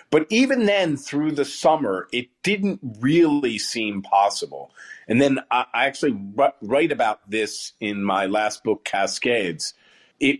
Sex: male